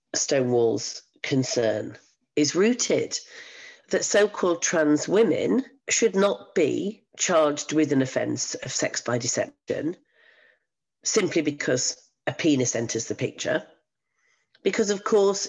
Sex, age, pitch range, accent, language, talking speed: female, 40-59, 130-205 Hz, British, English, 110 wpm